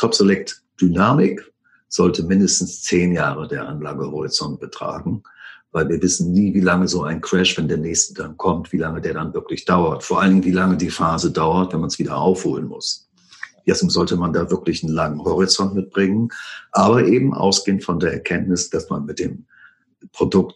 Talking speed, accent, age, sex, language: 185 wpm, German, 50-69, male, German